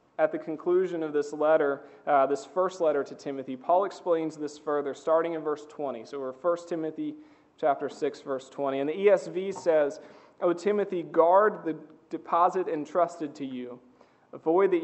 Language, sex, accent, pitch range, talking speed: English, male, American, 150-185 Hz, 170 wpm